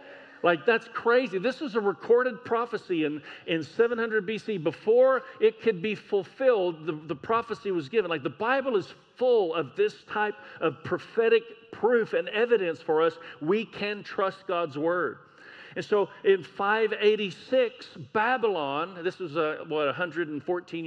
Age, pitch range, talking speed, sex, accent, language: 50-69, 180-235 Hz, 145 wpm, male, American, English